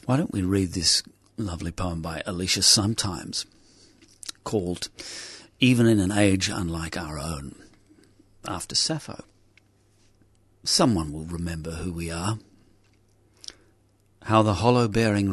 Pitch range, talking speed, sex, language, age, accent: 95-110 Hz, 115 wpm, male, English, 50-69, British